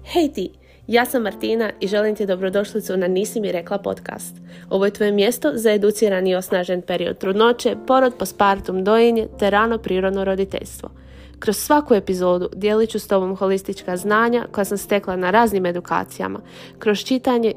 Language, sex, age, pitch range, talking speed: Croatian, female, 20-39, 185-230 Hz, 160 wpm